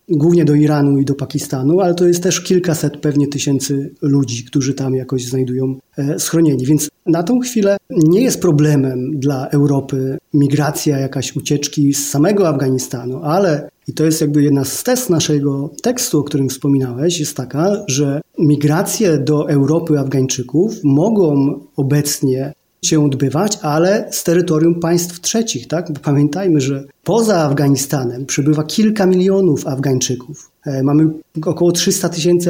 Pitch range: 140-175 Hz